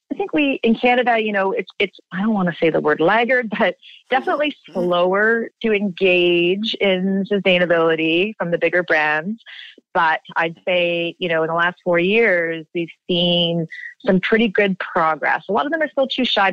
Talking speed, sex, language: 190 wpm, female, English